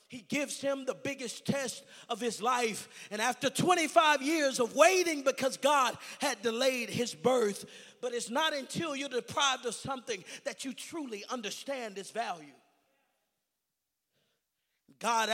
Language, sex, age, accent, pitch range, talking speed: English, male, 30-49, American, 210-285 Hz, 140 wpm